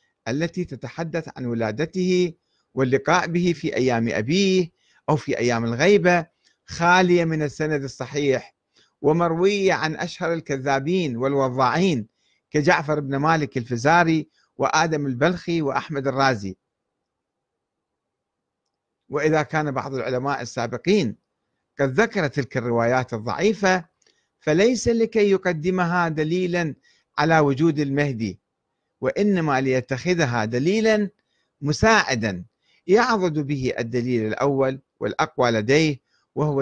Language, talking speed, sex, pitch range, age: Arabic, 95 wpm, male, 130-180 Hz, 50-69